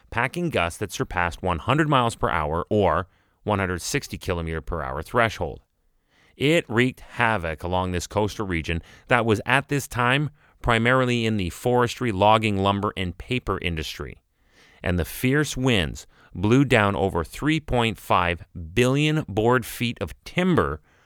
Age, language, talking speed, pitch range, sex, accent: 30-49, English, 135 wpm, 90-125 Hz, male, American